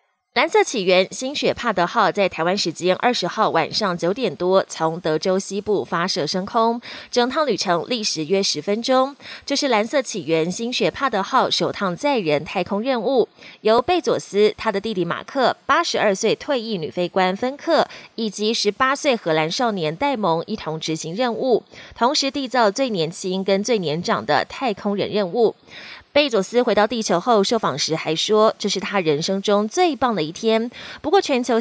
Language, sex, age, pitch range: Chinese, female, 20-39, 180-245 Hz